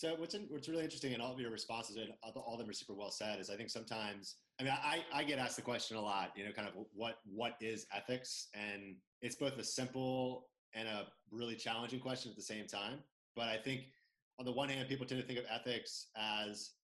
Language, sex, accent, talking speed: English, male, American, 245 wpm